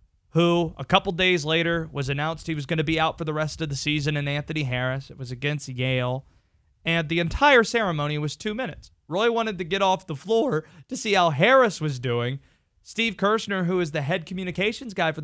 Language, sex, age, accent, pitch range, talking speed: English, male, 30-49, American, 135-195 Hz, 215 wpm